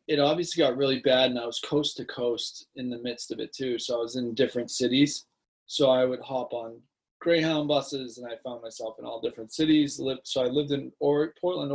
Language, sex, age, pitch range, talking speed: English, male, 20-39, 120-140 Hz, 220 wpm